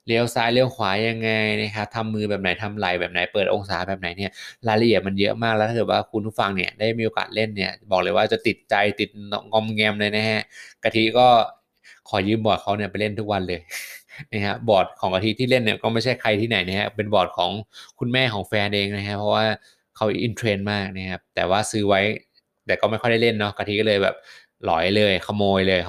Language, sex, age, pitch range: Thai, male, 20-39, 100-115 Hz